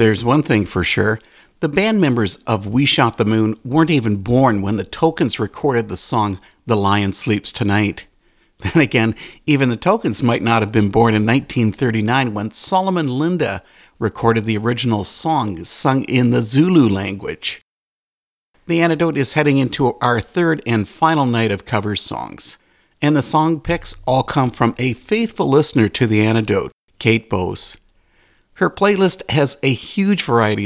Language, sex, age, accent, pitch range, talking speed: English, male, 50-69, American, 105-145 Hz, 165 wpm